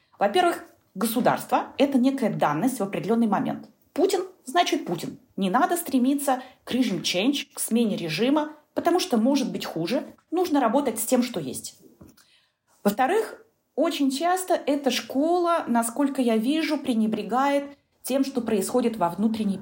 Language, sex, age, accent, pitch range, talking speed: Russian, female, 30-49, native, 205-280 Hz, 135 wpm